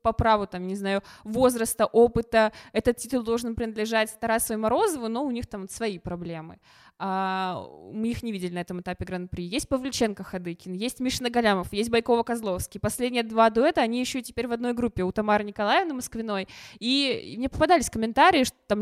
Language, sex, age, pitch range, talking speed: Russian, female, 20-39, 210-245 Hz, 175 wpm